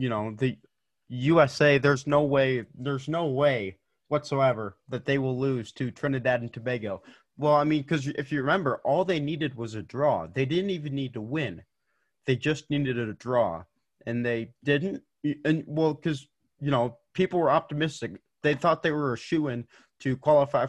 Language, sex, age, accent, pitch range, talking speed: English, male, 30-49, American, 120-145 Hz, 185 wpm